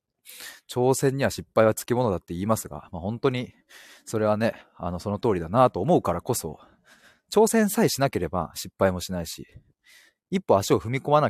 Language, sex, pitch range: Japanese, male, 95-145 Hz